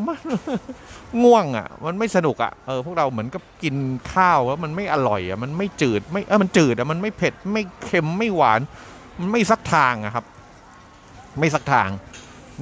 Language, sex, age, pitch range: Thai, male, 30-49, 110-145 Hz